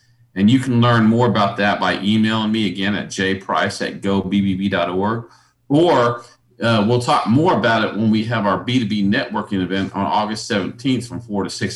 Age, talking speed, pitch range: 40-59, 185 wpm, 100-125 Hz